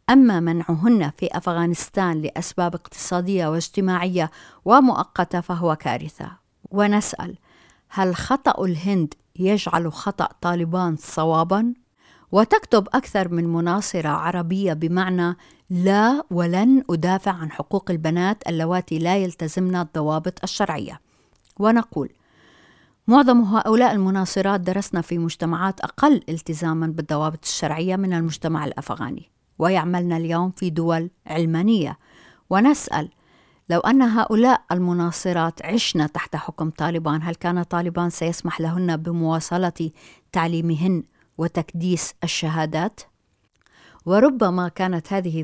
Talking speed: 100 wpm